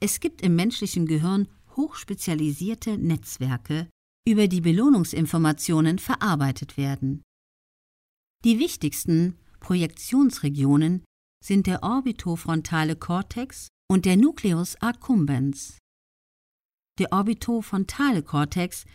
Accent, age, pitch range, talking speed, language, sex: German, 50-69, 150-215 Hz, 80 wpm, German, female